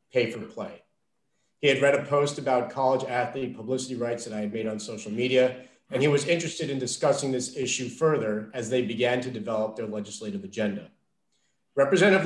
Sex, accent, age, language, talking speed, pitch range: male, American, 40-59, English, 175 wpm, 115-155 Hz